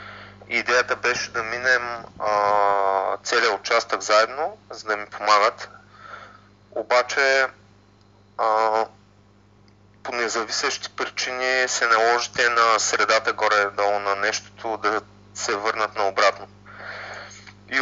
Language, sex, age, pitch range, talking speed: Bulgarian, male, 30-49, 100-120 Hz, 100 wpm